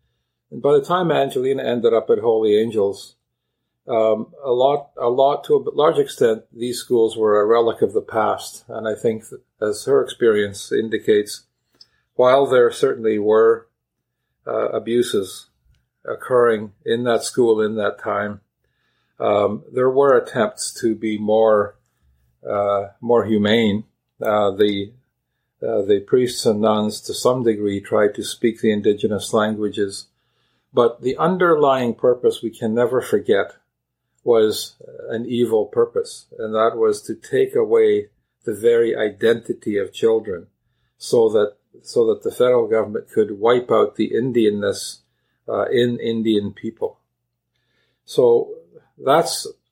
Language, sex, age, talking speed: English, male, 50-69, 135 wpm